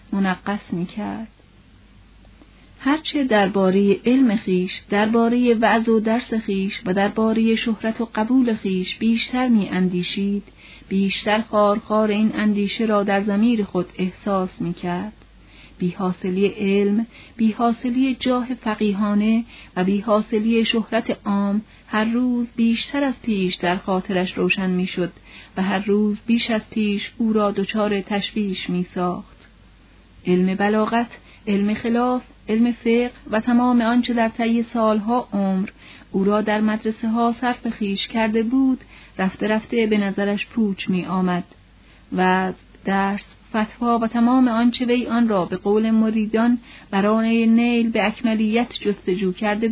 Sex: female